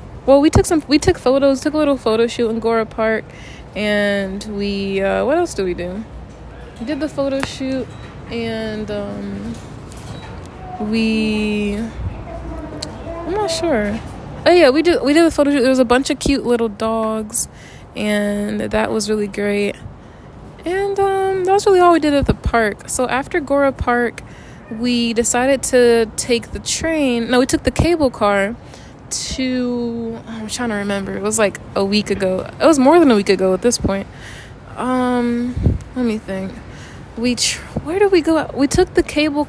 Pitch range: 210-280 Hz